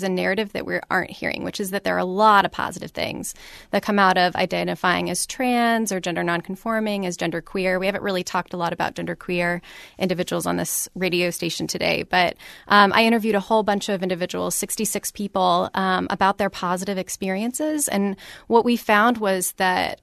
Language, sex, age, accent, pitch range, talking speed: English, female, 20-39, American, 185-215 Hz, 195 wpm